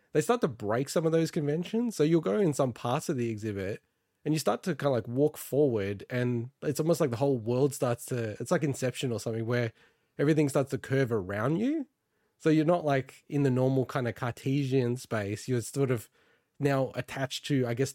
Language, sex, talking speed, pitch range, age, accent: English, male, 220 wpm, 125-155 Hz, 20-39, Australian